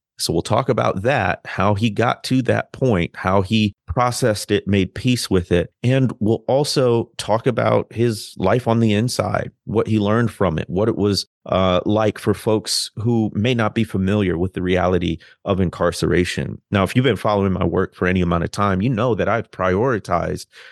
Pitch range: 90-110 Hz